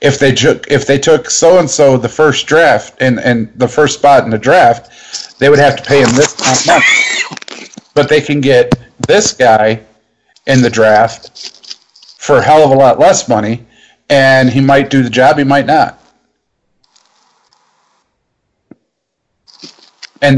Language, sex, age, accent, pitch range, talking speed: English, male, 50-69, American, 125-155 Hz, 160 wpm